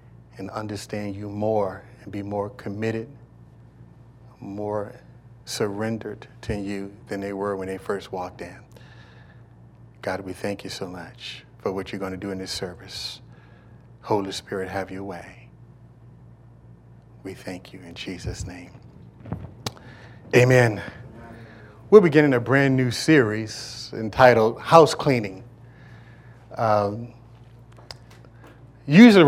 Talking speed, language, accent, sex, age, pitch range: 115 wpm, English, American, male, 40-59, 105-135 Hz